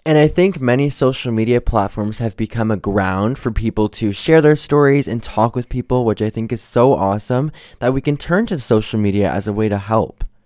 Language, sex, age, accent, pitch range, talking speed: English, male, 20-39, American, 105-145 Hz, 225 wpm